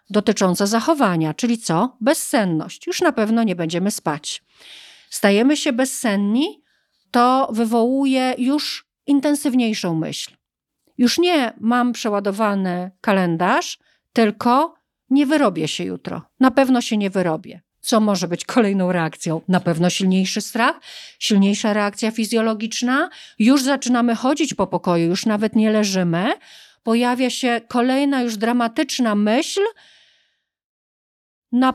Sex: female